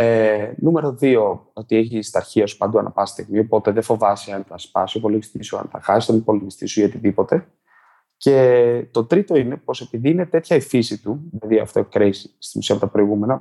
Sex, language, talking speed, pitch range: male, Greek, 205 wpm, 110-130 Hz